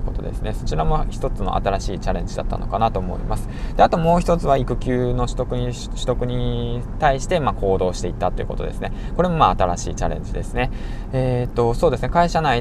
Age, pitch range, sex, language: 20-39, 95-125 Hz, male, Japanese